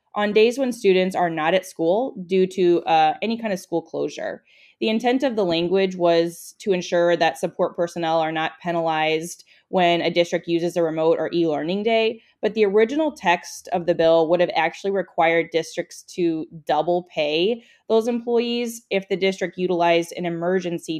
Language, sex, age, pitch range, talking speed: English, female, 20-39, 165-195 Hz, 175 wpm